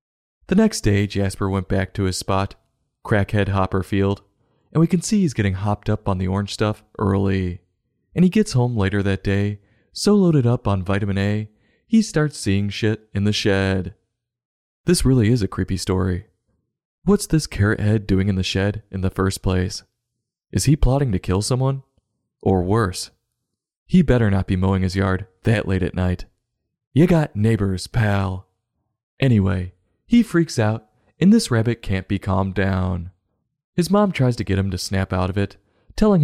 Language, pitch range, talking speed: English, 95-130 Hz, 180 wpm